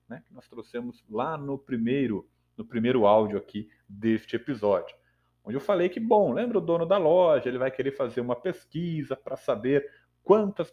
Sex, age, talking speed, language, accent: male, 40-59, 180 wpm, Portuguese, Brazilian